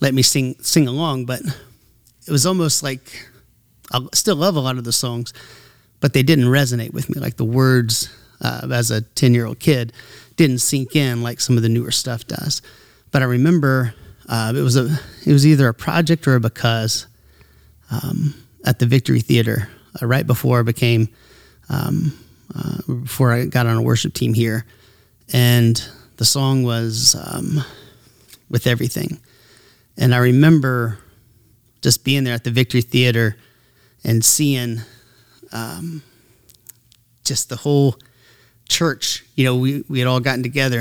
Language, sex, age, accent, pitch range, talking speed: English, male, 30-49, American, 115-135 Hz, 165 wpm